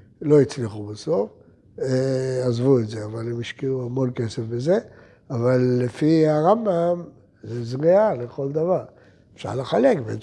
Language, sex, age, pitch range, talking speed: Hebrew, male, 60-79, 120-155 Hz, 130 wpm